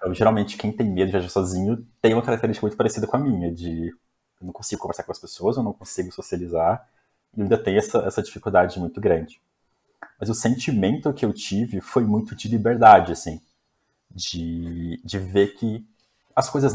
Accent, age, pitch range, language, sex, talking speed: Brazilian, 20-39, 95-120 Hz, Portuguese, male, 190 wpm